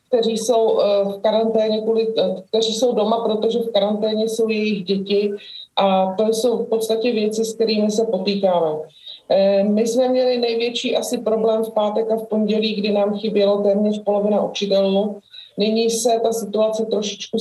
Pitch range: 200-225 Hz